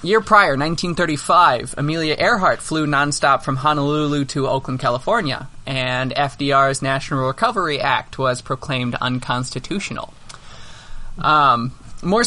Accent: American